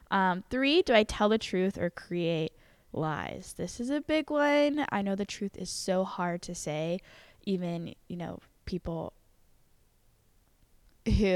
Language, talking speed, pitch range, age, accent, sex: English, 155 wpm, 170-210 Hz, 10-29, American, female